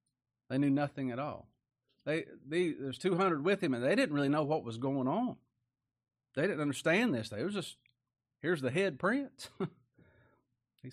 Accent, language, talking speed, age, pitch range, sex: American, English, 175 wpm, 40-59, 120-160 Hz, male